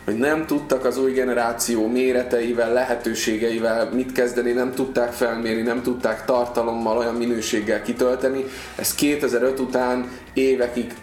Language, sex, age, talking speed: Hungarian, male, 20-39, 125 wpm